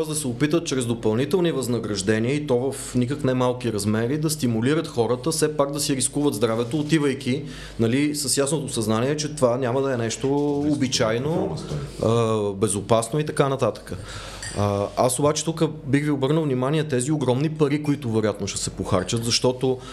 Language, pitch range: Bulgarian, 115-150 Hz